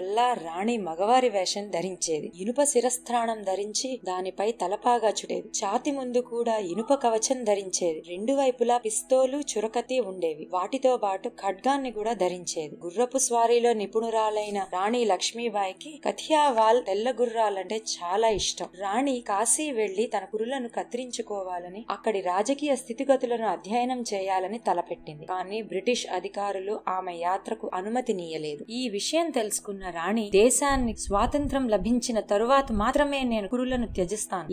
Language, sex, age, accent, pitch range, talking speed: Telugu, female, 20-39, native, 190-245 Hz, 115 wpm